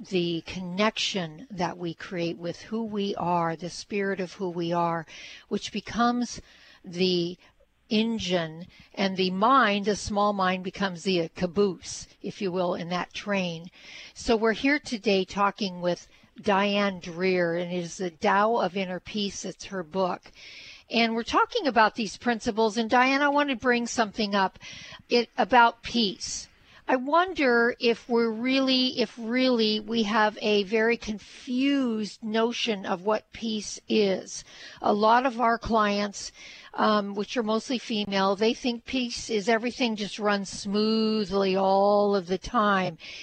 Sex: female